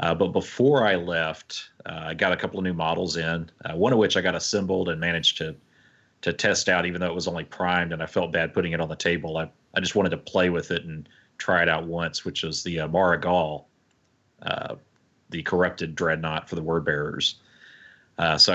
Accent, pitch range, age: American, 80-90 Hz, 30-49